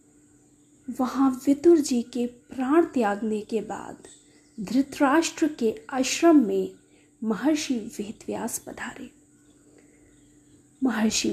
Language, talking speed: Hindi, 85 wpm